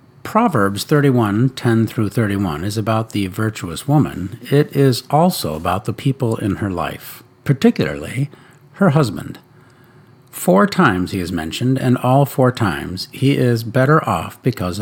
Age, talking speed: 60-79, 140 wpm